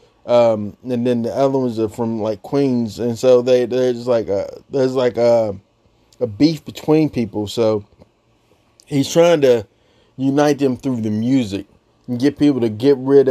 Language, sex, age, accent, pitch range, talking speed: English, male, 20-39, American, 115-135 Hz, 170 wpm